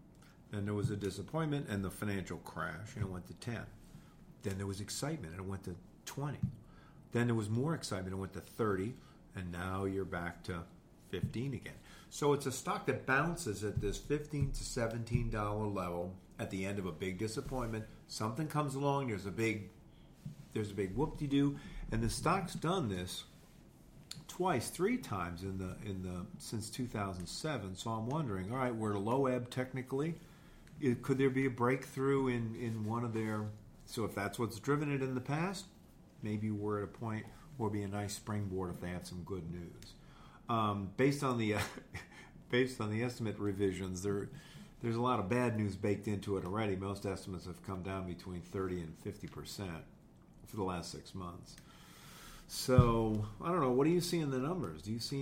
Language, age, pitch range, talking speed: English, 50-69, 100-130 Hz, 200 wpm